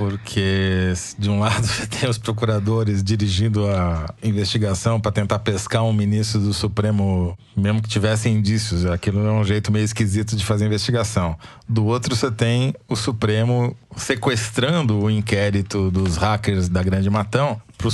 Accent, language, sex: Brazilian, Portuguese, male